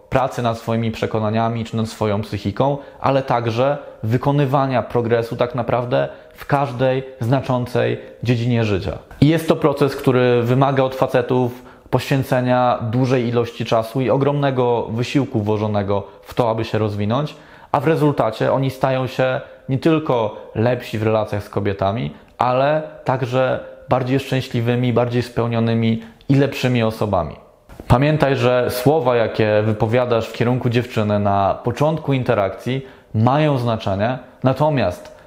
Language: Polish